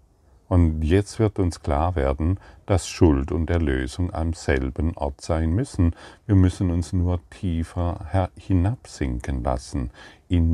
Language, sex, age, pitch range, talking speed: German, male, 50-69, 75-95 Hz, 130 wpm